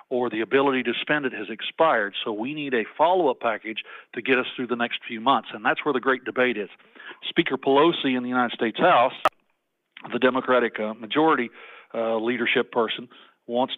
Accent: American